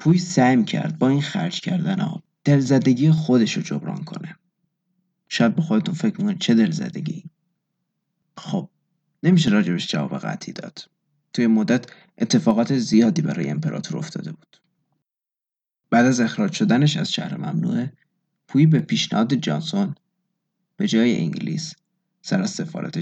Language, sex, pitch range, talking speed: Persian, male, 155-195 Hz, 130 wpm